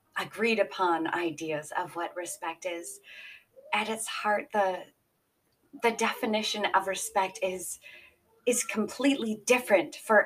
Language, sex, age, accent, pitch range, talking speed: English, female, 20-39, American, 190-245 Hz, 115 wpm